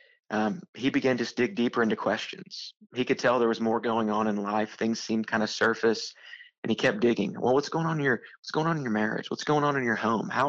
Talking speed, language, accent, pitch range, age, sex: 265 wpm, English, American, 110-125 Hz, 20-39, male